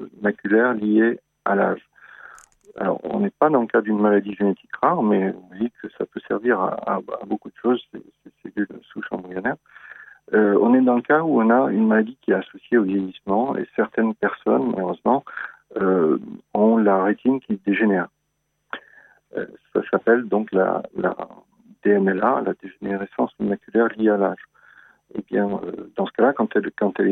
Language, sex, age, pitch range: French, male, 50-69, 100-120 Hz